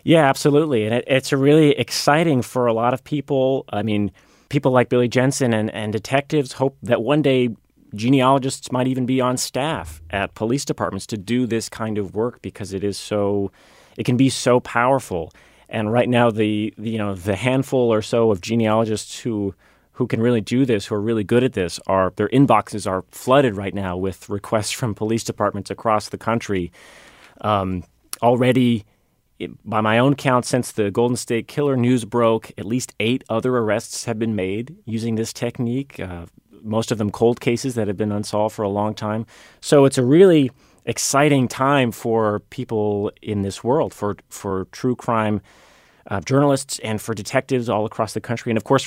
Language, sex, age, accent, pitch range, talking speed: English, male, 30-49, American, 105-130 Hz, 190 wpm